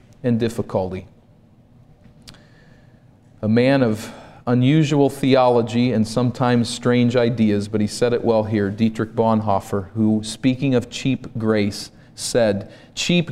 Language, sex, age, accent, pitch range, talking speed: English, male, 40-59, American, 110-130 Hz, 115 wpm